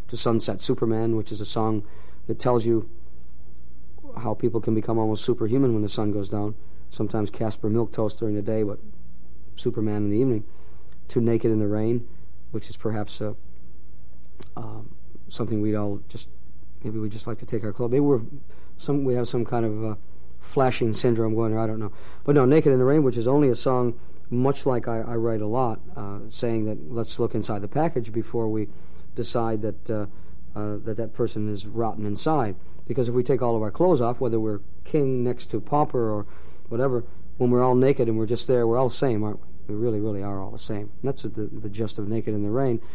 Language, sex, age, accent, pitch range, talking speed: English, male, 50-69, American, 105-120 Hz, 215 wpm